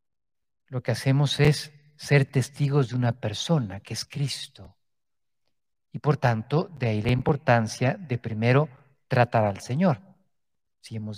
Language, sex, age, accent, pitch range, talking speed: Spanish, male, 50-69, Mexican, 110-145 Hz, 140 wpm